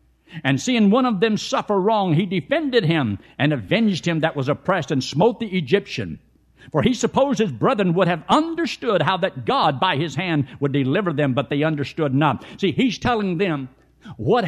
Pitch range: 150-230 Hz